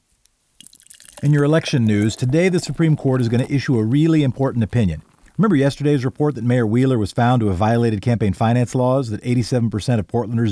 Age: 50-69